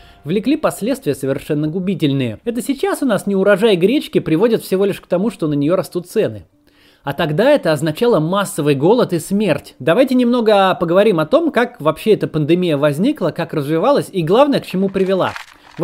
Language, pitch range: Russian, 155-215 Hz